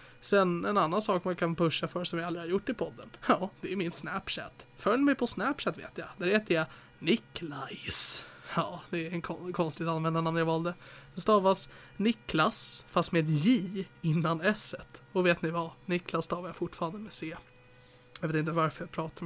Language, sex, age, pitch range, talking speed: Swedish, male, 20-39, 155-180 Hz, 200 wpm